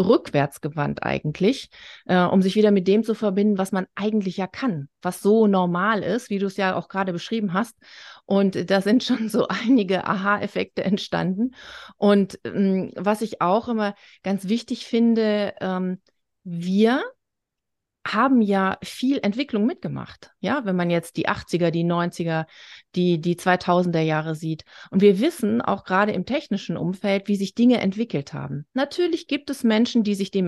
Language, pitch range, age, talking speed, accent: German, 190-240 Hz, 30-49, 165 wpm, German